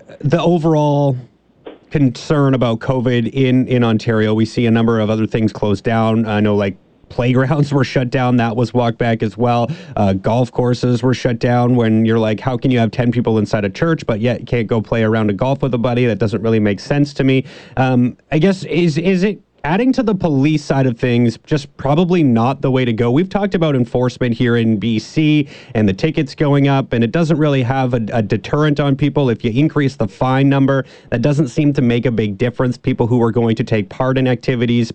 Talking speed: 225 wpm